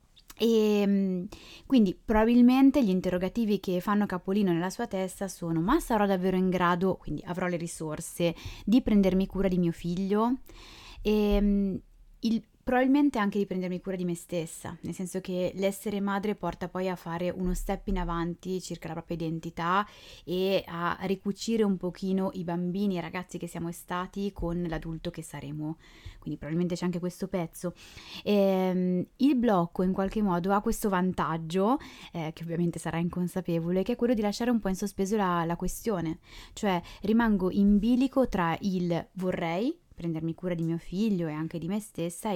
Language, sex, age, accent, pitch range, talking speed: Italian, female, 20-39, native, 170-205 Hz, 170 wpm